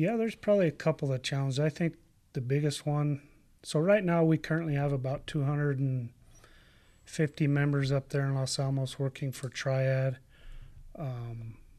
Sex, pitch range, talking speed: male, 125-140 Hz, 155 wpm